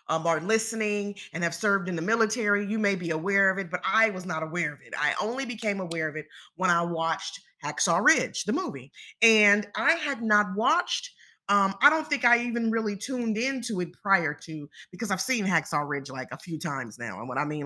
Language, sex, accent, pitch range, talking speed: English, female, American, 160-225 Hz, 225 wpm